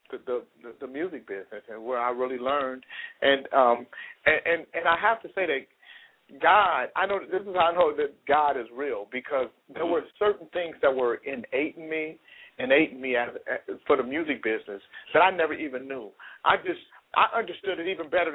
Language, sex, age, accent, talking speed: English, male, 50-69, American, 205 wpm